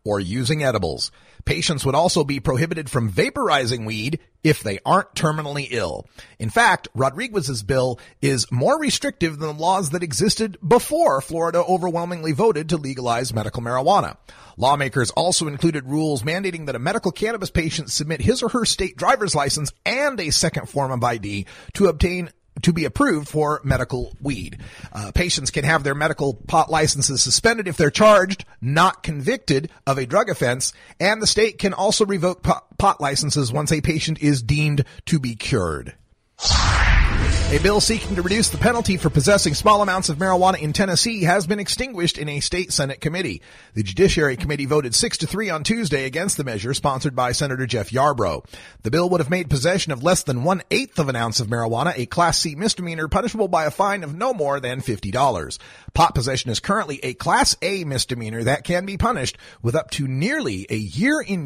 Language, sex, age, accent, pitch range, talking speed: English, male, 40-59, American, 130-185 Hz, 185 wpm